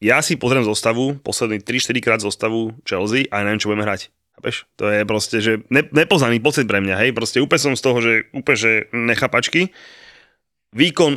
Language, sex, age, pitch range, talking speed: Slovak, male, 30-49, 105-130 Hz, 175 wpm